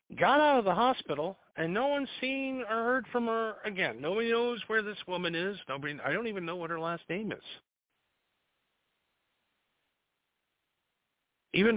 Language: English